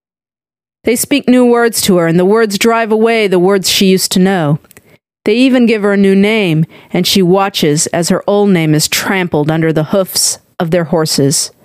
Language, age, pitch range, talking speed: English, 40-59, 165-215 Hz, 200 wpm